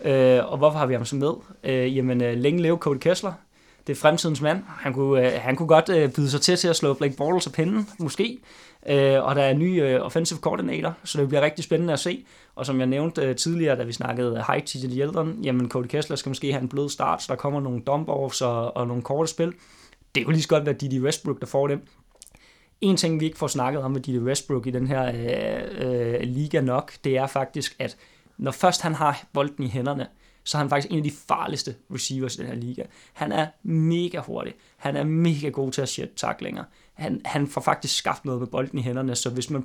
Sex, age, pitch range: male, 20-39, 130-155 Hz